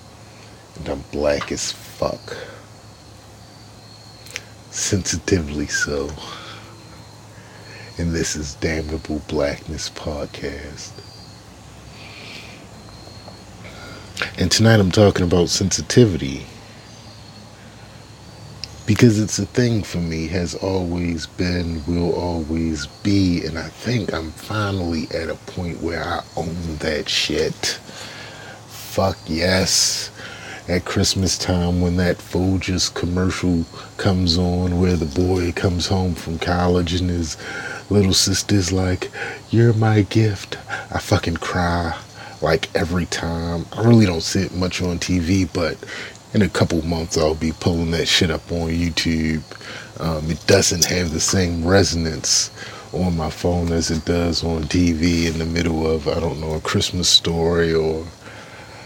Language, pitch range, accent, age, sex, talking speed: English, 85-105 Hz, American, 40-59, male, 125 wpm